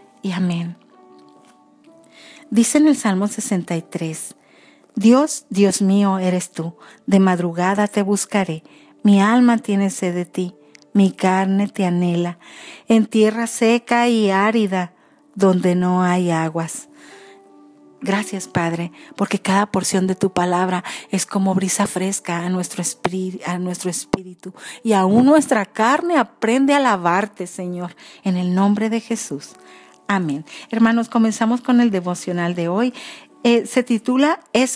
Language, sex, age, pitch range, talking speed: Spanish, female, 40-59, 180-235 Hz, 130 wpm